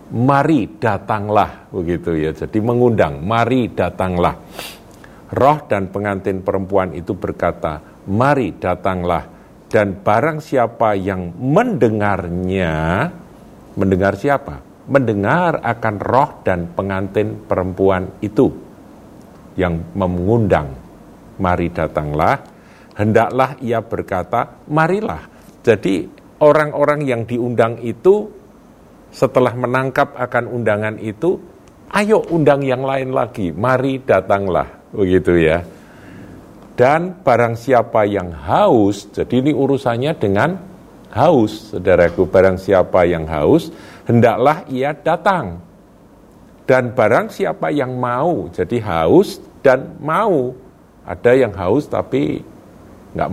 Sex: male